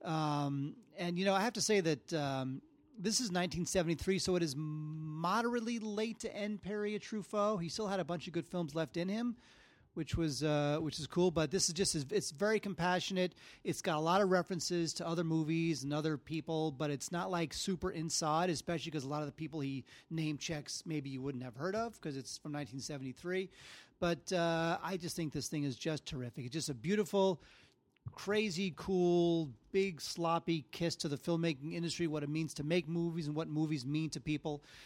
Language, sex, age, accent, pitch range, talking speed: English, male, 30-49, American, 155-190 Hz, 205 wpm